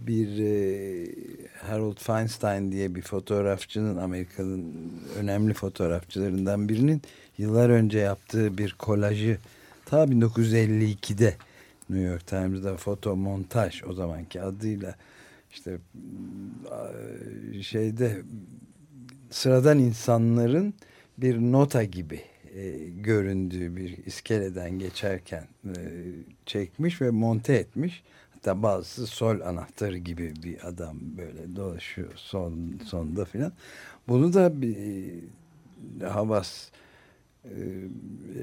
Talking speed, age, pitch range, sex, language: 95 wpm, 60-79, 95-120 Hz, male, Turkish